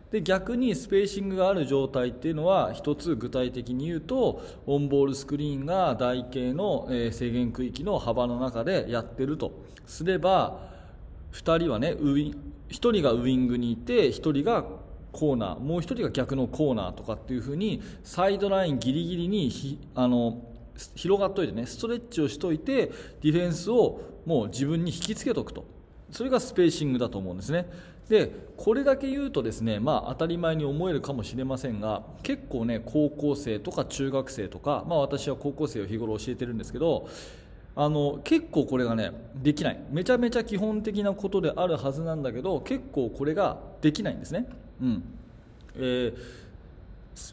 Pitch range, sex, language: 125-185 Hz, male, Japanese